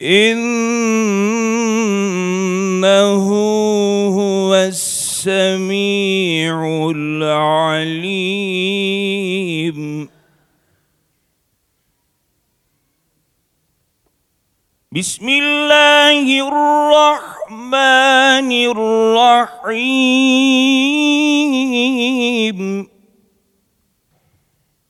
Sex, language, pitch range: male, Turkish, 215-265 Hz